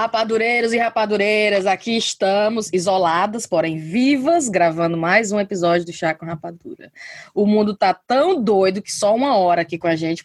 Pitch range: 180-255 Hz